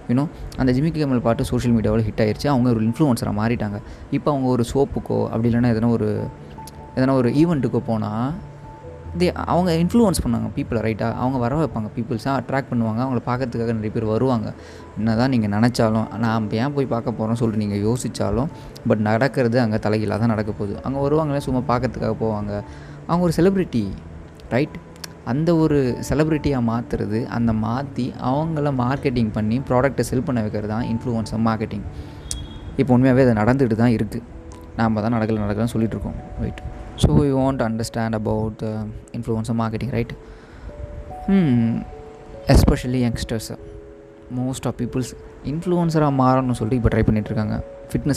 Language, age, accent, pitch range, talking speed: Tamil, 20-39, native, 110-130 Hz, 150 wpm